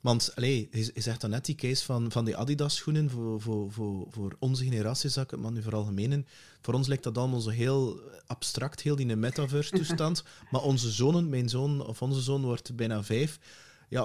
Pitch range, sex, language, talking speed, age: 115-140 Hz, male, English, 210 wpm, 30-49